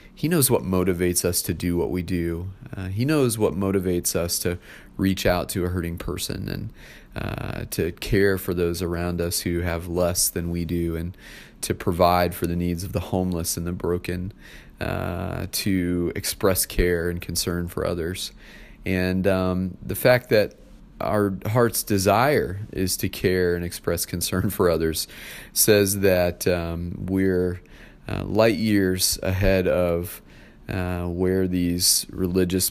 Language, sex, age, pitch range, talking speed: English, male, 30-49, 85-100 Hz, 160 wpm